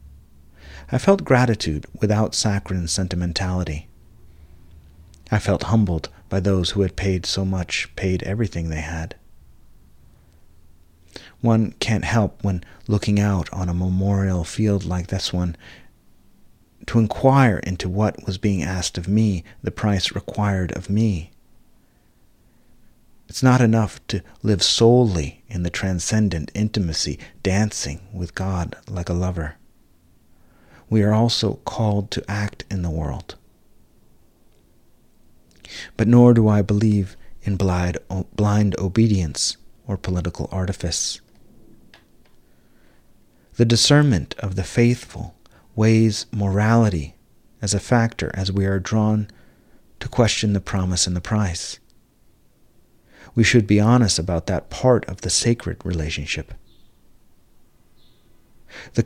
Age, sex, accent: 40-59, male, American